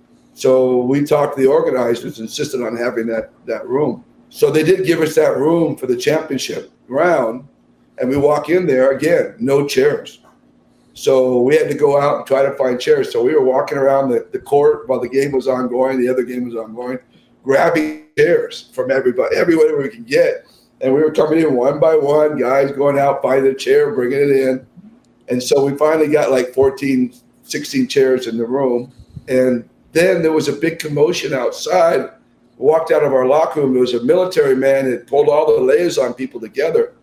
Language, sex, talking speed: English, male, 200 wpm